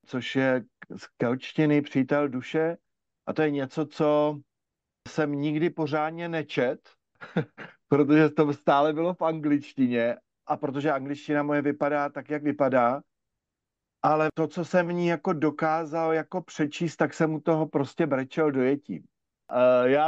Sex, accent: male, native